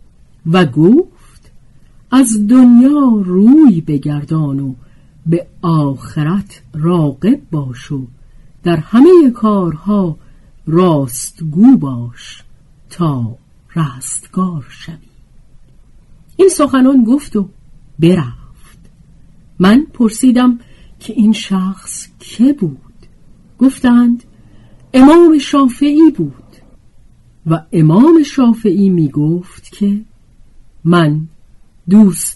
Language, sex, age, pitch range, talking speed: Persian, female, 50-69, 135-215 Hz, 80 wpm